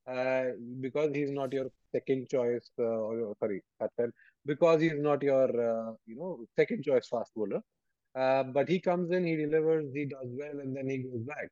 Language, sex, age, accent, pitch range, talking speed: English, male, 20-39, Indian, 120-145 Hz, 190 wpm